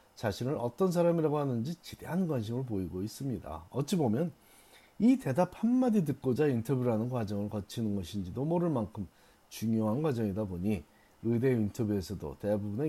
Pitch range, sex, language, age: 100-150 Hz, male, Korean, 40-59